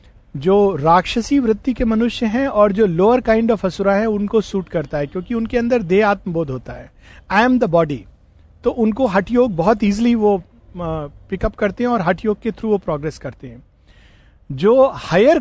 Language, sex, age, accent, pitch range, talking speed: Hindi, male, 50-69, native, 155-215 Hz, 190 wpm